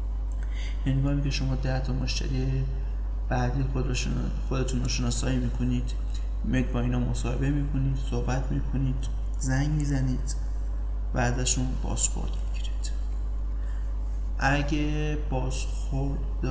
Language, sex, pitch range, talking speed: Persian, male, 120-135 Hz, 100 wpm